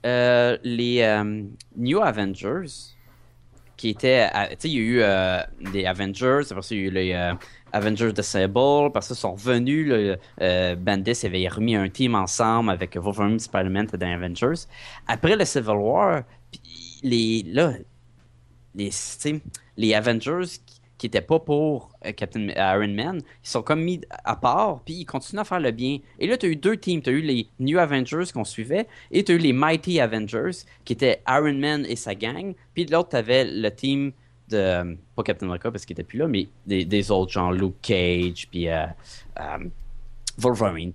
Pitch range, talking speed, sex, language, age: 100-140 Hz, 190 wpm, male, French, 20-39